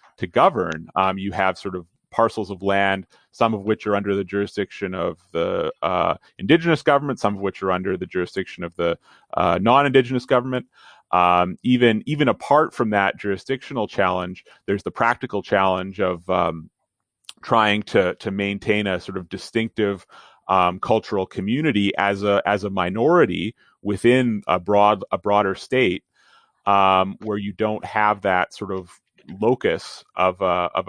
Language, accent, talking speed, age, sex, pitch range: English, American, 160 wpm, 30-49, male, 95-115 Hz